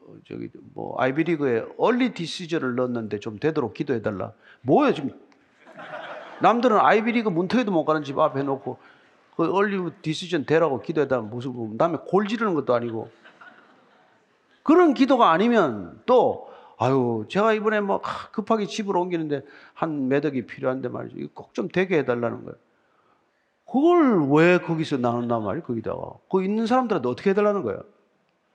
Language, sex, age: Korean, male, 40-59